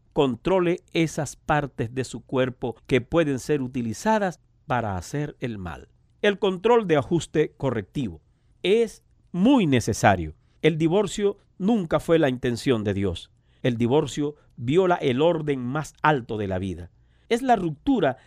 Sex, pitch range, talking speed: male, 125-190 Hz, 140 wpm